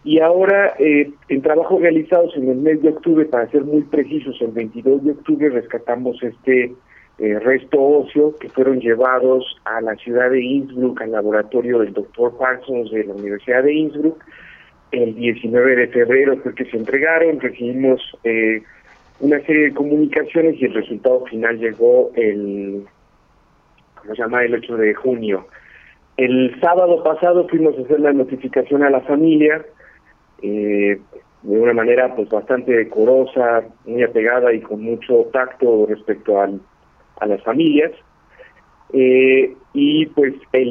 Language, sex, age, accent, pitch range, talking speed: Spanish, male, 50-69, Mexican, 120-155 Hz, 150 wpm